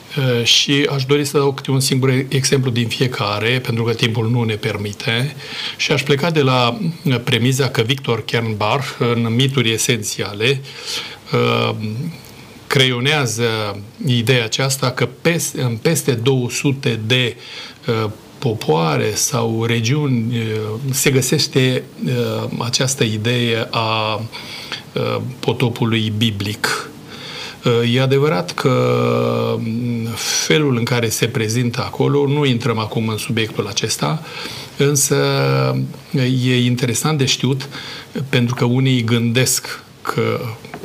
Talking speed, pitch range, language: 105 wpm, 115-135 Hz, Romanian